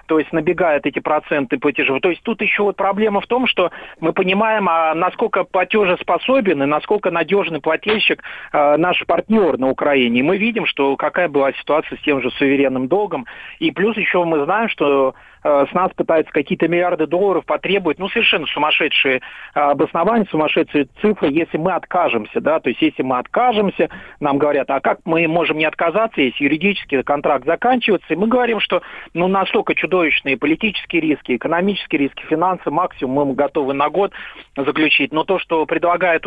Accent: native